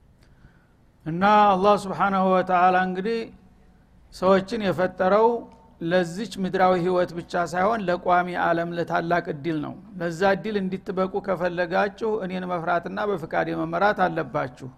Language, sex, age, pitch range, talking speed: Amharic, male, 60-79, 175-200 Hz, 110 wpm